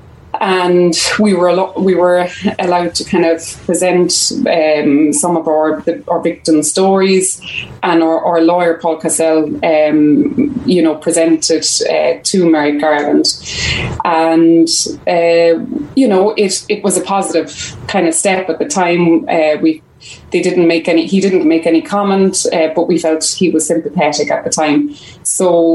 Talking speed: 165 wpm